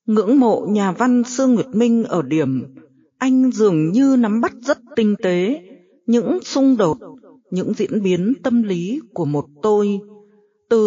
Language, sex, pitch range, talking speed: Vietnamese, female, 180-250 Hz, 160 wpm